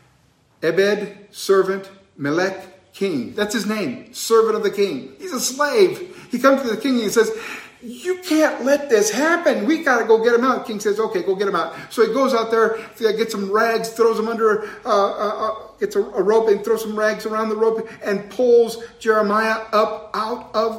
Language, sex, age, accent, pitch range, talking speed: English, male, 50-69, American, 180-245 Hz, 205 wpm